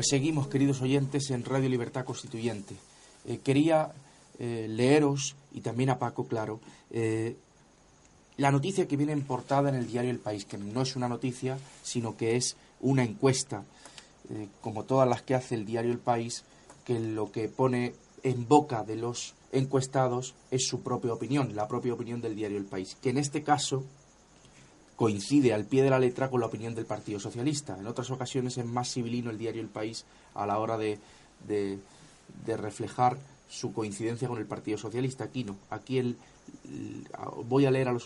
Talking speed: 185 wpm